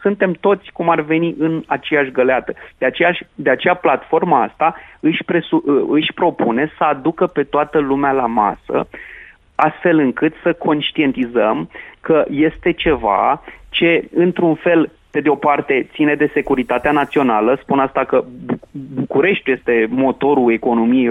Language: Romanian